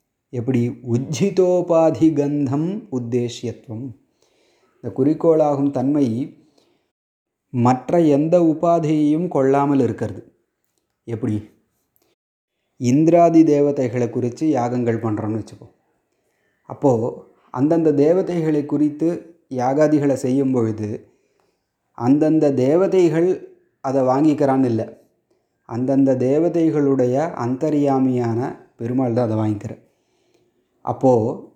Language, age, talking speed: Tamil, 30-49, 70 wpm